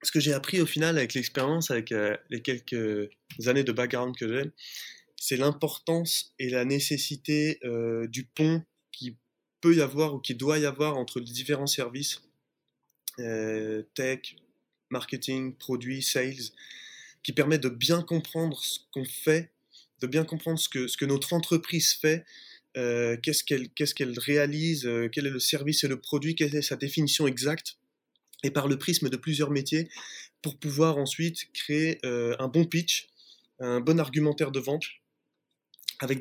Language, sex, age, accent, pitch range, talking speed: French, male, 20-39, French, 125-155 Hz, 160 wpm